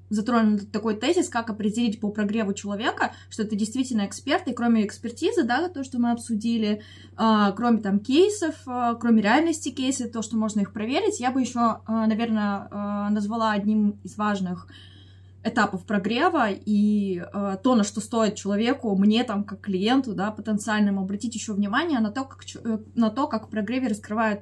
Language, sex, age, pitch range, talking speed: Russian, female, 20-39, 205-235 Hz, 150 wpm